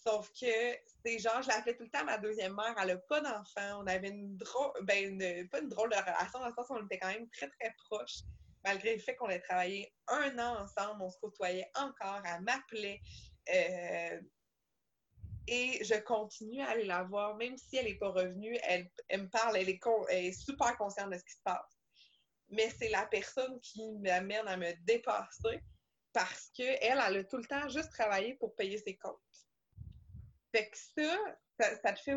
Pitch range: 195-255 Hz